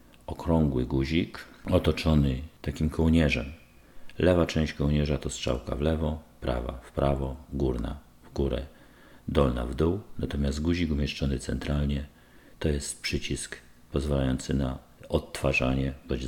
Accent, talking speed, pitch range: native, 120 wpm, 65-80 Hz